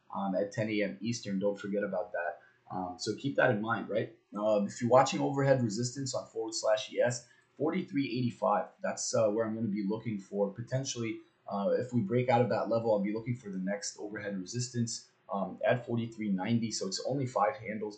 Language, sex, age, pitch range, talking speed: English, male, 20-39, 100-120 Hz, 205 wpm